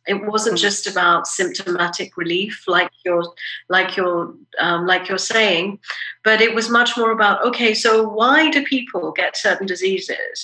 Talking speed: 160 wpm